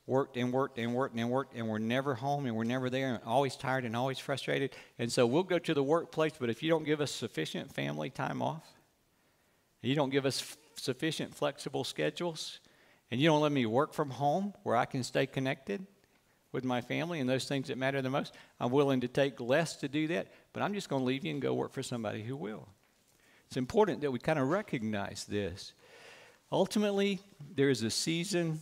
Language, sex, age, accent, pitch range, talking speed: English, male, 60-79, American, 115-145 Hz, 215 wpm